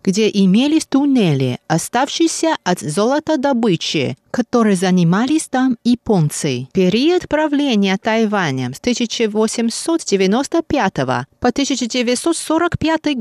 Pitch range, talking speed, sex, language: 170-255 Hz, 75 wpm, female, Russian